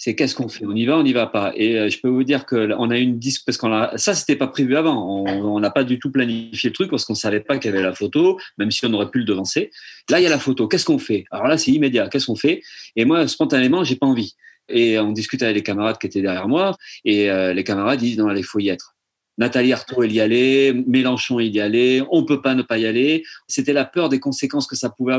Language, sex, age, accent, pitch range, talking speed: French, male, 40-59, French, 115-145 Hz, 295 wpm